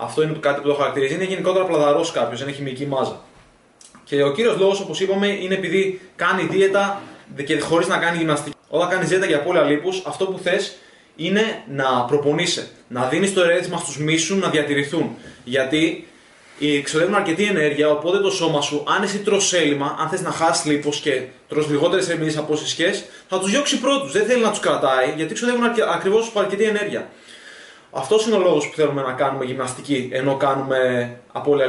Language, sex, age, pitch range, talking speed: Greek, male, 20-39, 140-190 Hz, 185 wpm